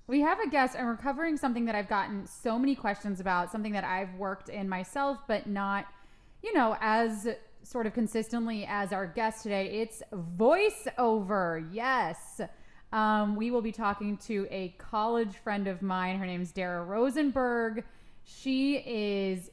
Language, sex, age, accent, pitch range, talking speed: English, female, 30-49, American, 195-240 Hz, 165 wpm